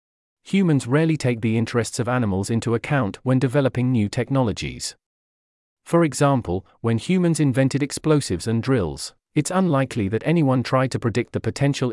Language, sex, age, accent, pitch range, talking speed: English, male, 40-59, British, 110-140 Hz, 150 wpm